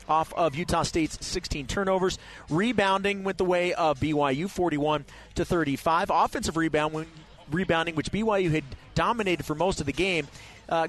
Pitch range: 165-205 Hz